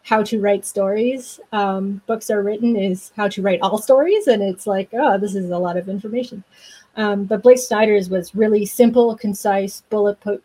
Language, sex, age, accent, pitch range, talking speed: English, female, 30-49, American, 195-230 Hz, 190 wpm